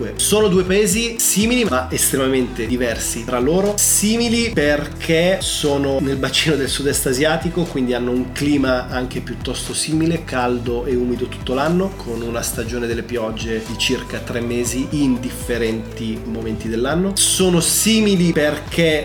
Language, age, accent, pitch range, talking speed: Italian, 30-49, native, 125-160 Hz, 145 wpm